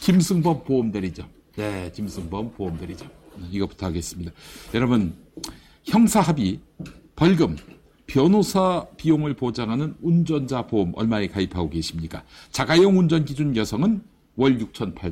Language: English